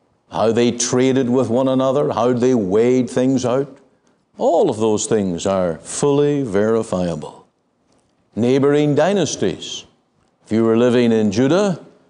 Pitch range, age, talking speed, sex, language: 135-205 Hz, 60-79, 130 wpm, male, English